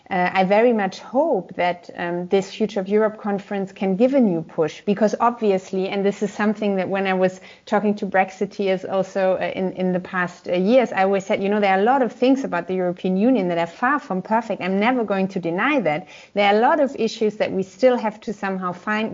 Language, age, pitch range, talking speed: English, 30-49, 190-225 Hz, 240 wpm